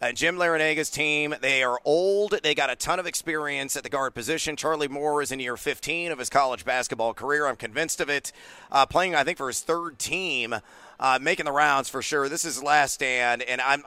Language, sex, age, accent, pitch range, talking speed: English, male, 40-59, American, 130-165 Hz, 225 wpm